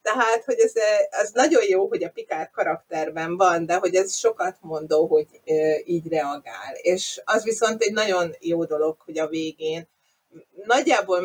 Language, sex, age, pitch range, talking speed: Hungarian, female, 30-49, 170-240 Hz, 160 wpm